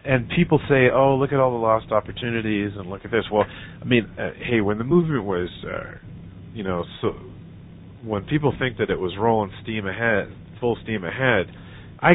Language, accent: English, American